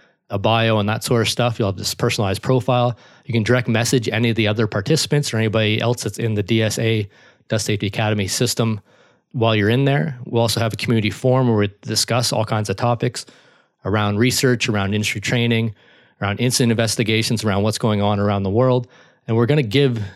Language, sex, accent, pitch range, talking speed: English, male, American, 105-125 Hz, 205 wpm